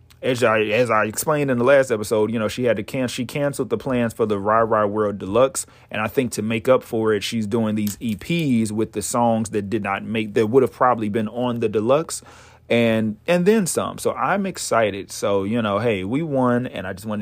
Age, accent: 30-49, American